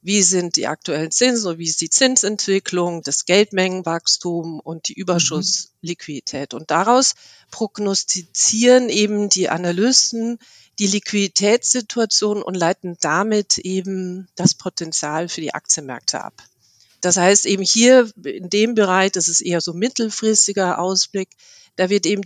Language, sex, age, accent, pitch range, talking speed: German, female, 50-69, German, 170-205 Hz, 130 wpm